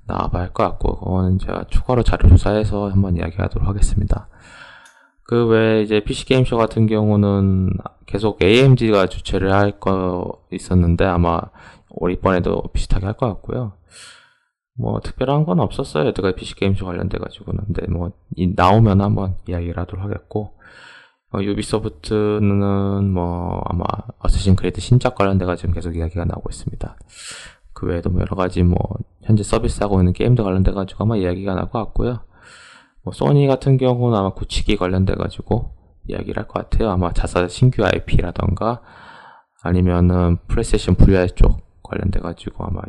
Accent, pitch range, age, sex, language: native, 90-110 Hz, 20-39, male, Korean